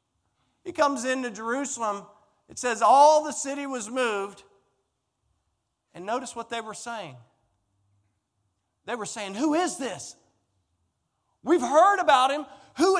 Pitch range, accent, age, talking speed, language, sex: 155-255 Hz, American, 40-59, 130 wpm, English, male